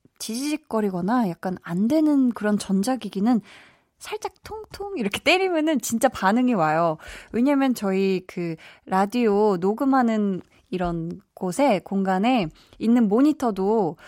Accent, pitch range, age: native, 190-275 Hz, 20-39